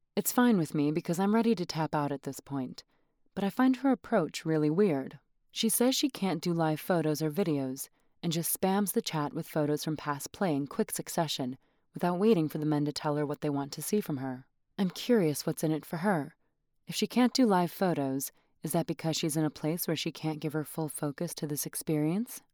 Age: 30-49